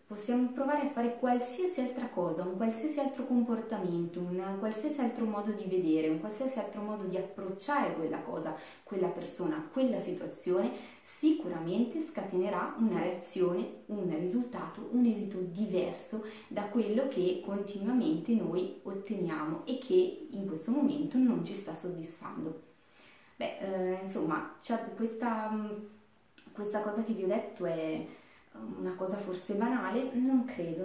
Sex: female